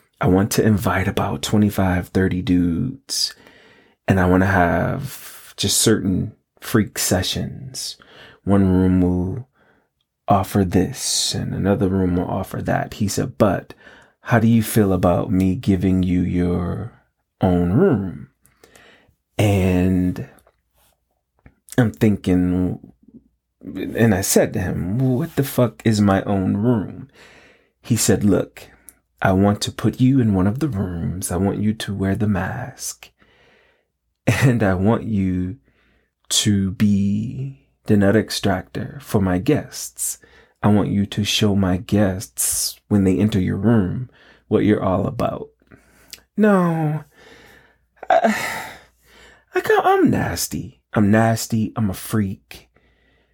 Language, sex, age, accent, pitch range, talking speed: English, male, 30-49, American, 95-115 Hz, 130 wpm